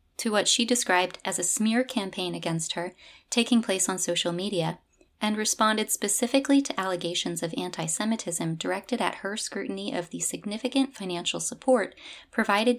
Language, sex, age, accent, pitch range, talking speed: English, female, 30-49, American, 170-225 Hz, 150 wpm